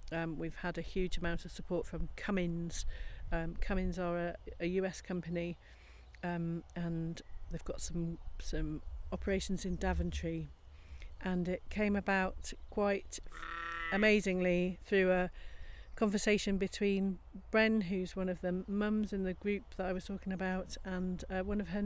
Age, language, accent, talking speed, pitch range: 40-59, English, British, 155 wpm, 170-195 Hz